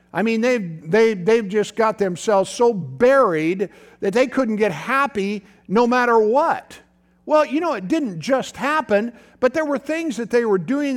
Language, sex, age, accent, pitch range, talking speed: English, male, 50-69, American, 160-225 Hz, 180 wpm